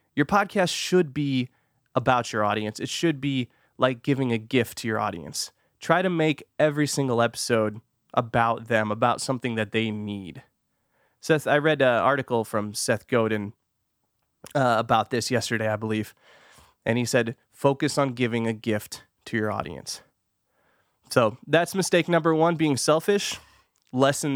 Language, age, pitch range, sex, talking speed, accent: English, 20-39, 110-140 Hz, male, 155 wpm, American